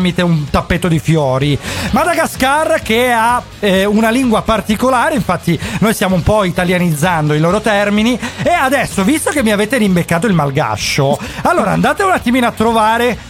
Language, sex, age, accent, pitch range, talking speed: Italian, male, 30-49, native, 175-240 Hz, 160 wpm